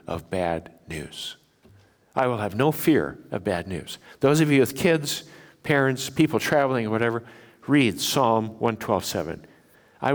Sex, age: male, 60-79